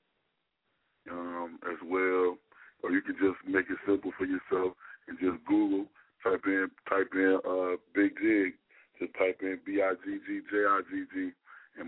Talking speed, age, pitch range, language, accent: 170 wpm, 20-39, 90-95 Hz, English, American